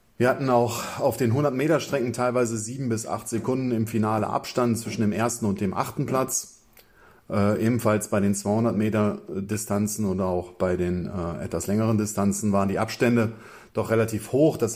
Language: German